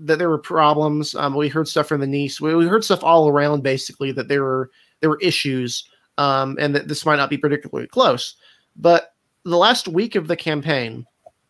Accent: American